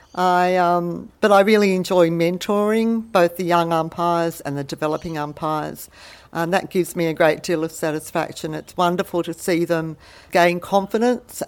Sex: female